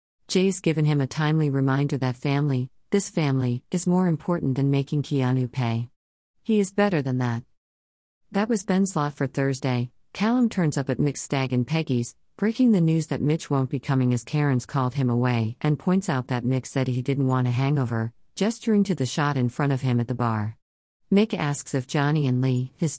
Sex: female